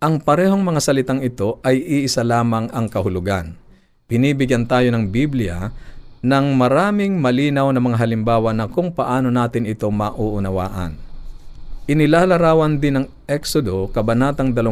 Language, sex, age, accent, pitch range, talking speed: Filipino, male, 50-69, native, 105-130 Hz, 125 wpm